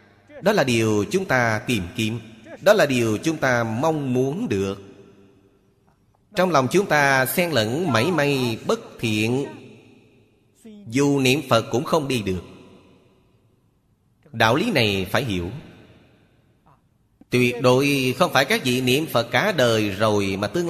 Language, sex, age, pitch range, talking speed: Vietnamese, male, 30-49, 110-140 Hz, 145 wpm